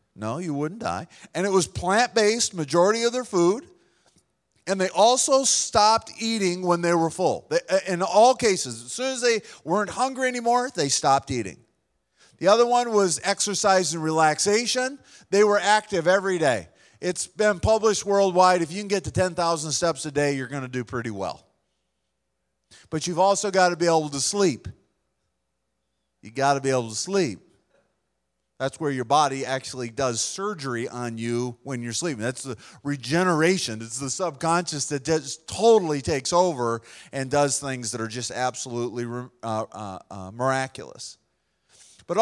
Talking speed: 165 wpm